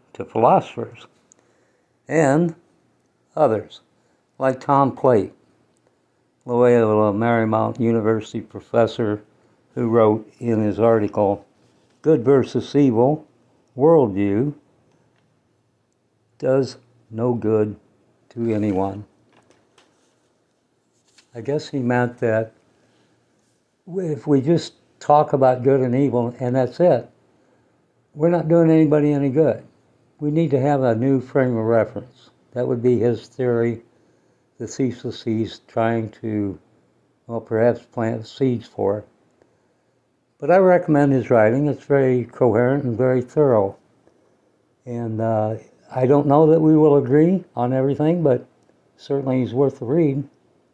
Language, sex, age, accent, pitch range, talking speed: English, male, 60-79, American, 115-145 Hz, 120 wpm